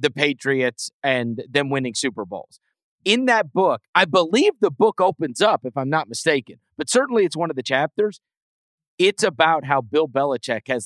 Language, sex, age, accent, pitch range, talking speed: English, male, 40-59, American, 130-190 Hz, 180 wpm